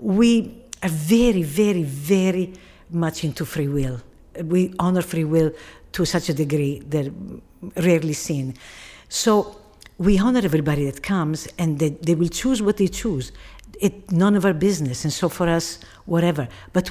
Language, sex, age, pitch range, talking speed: English, female, 60-79, 155-215 Hz, 160 wpm